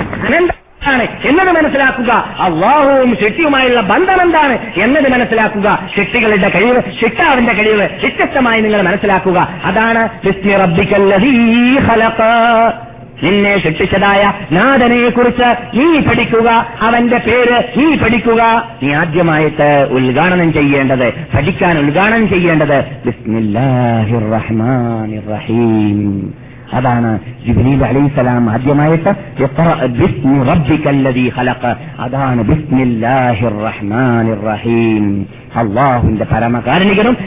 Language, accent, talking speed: Malayalam, native, 85 wpm